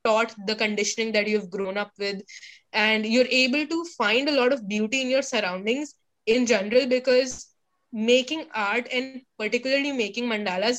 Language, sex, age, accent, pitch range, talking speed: Hindi, female, 20-39, native, 200-250 Hz, 165 wpm